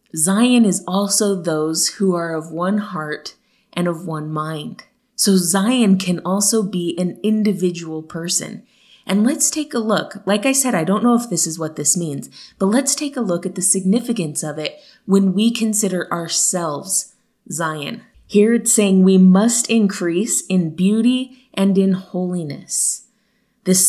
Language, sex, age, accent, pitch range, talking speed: English, female, 20-39, American, 160-200 Hz, 165 wpm